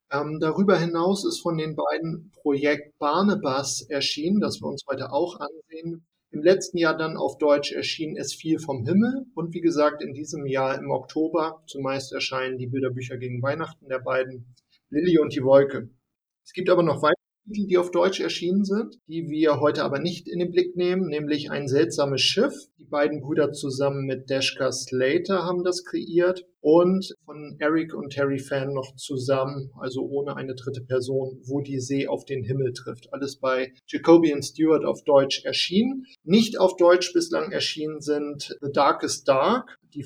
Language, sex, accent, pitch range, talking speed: German, male, German, 135-160 Hz, 175 wpm